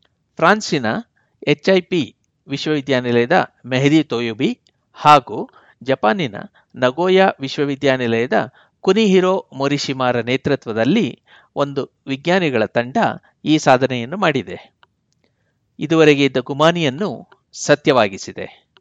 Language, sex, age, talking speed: Kannada, male, 60-79, 70 wpm